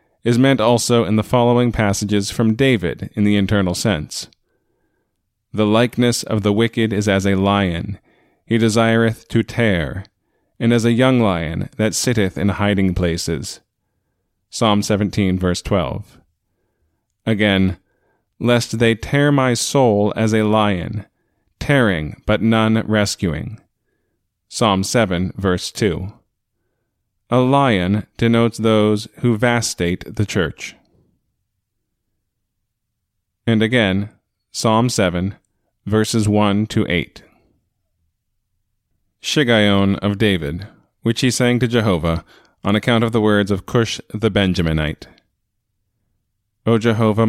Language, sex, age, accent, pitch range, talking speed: English, male, 30-49, American, 95-115 Hz, 115 wpm